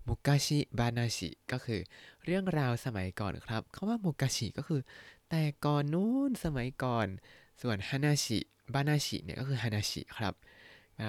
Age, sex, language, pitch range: 20-39, male, Thai, 105-145 Hz